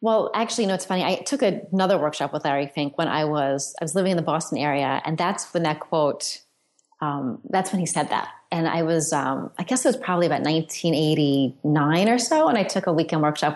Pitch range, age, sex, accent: 155-190 Hz, 30-49, female, American